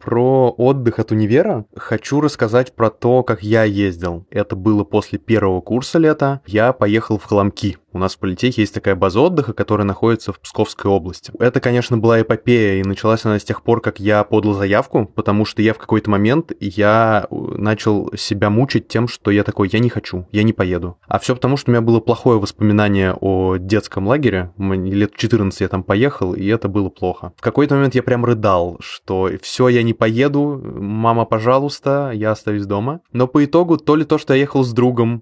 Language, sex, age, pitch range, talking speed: Russian, male, 20-39, 105-120 Hz, 200 wpm